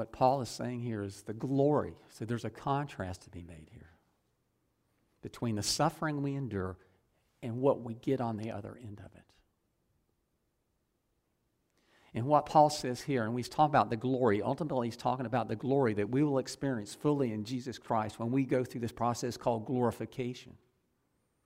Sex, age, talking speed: male, 50-69, 180 wpm